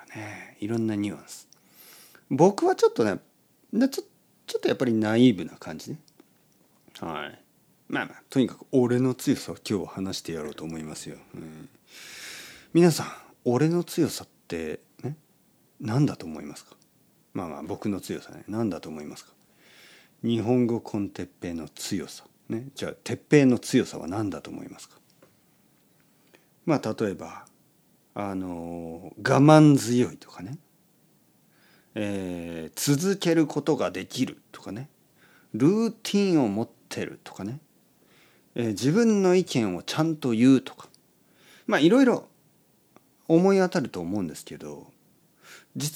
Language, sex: Japanese, male